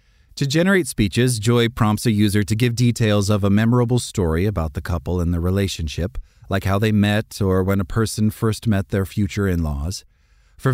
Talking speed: 190 wpm